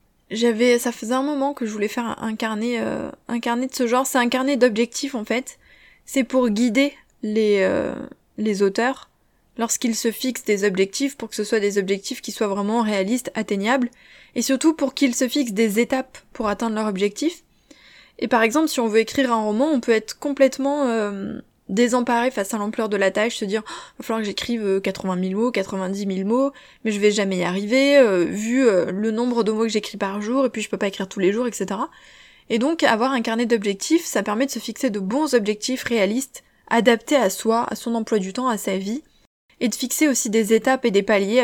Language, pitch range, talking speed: French, 210-255 Hz, 225 wpm